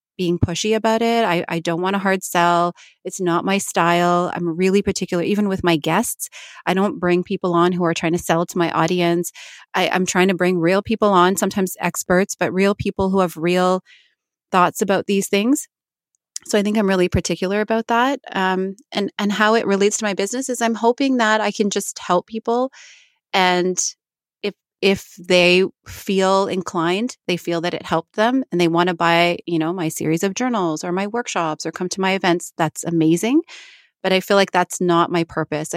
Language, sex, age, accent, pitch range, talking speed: English, female, 30-49, American, 170-205 Hz, 205 wpm